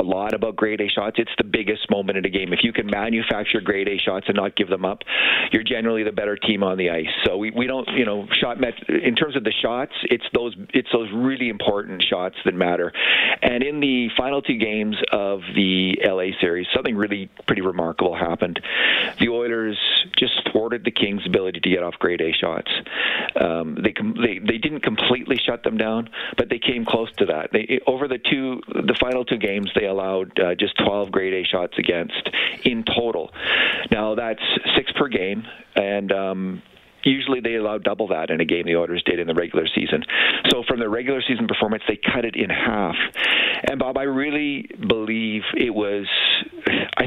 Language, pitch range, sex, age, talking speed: English, 100-125 Hz, male, 40-59, 205 wpm